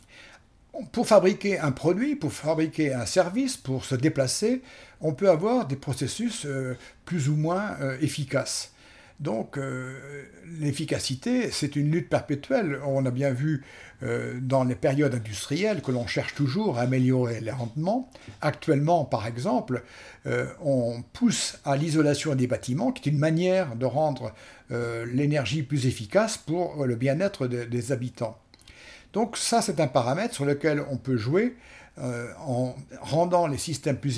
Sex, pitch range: male, 130-170 Hz